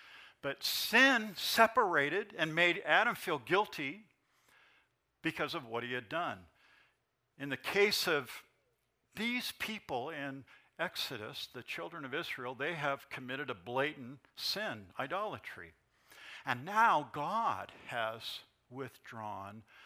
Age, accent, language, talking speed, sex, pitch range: 60-79, American, English, 115 wpm, male, 125-175 Hz